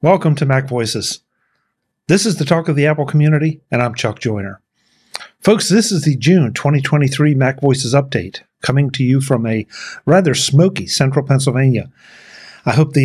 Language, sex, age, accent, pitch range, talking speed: English, male, 50-69, American, 130-160 Hz, 170 wpm